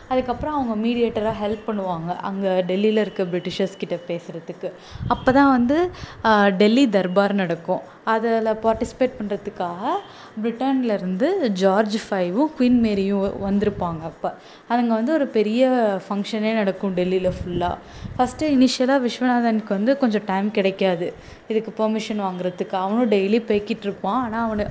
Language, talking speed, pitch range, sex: Tamil, 125 wpm, 190-230 Hz, female